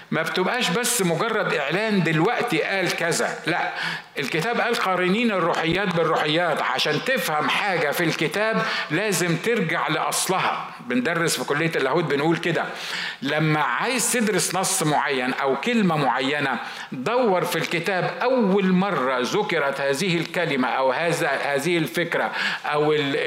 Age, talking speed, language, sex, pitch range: 50-69, 125 wpm, Arabic, male, 150-200 Hz